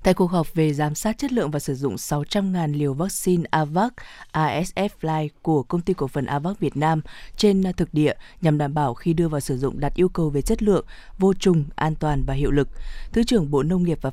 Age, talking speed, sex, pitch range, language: 20-39, 230 wpm, female, 150-190 Hz, Vietnamese